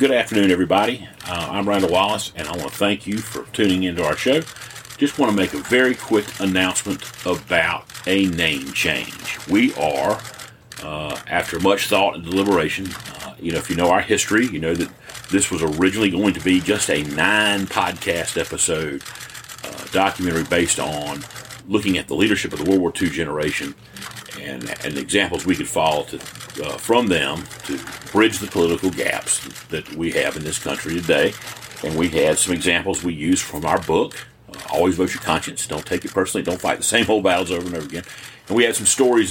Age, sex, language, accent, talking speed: 40-59, male, English, American, 195 wpm